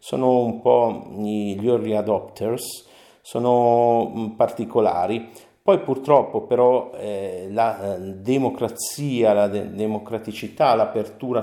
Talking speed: 95 wpm